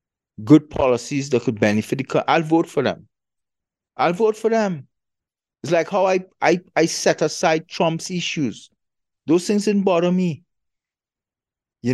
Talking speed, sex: 155 wpm, male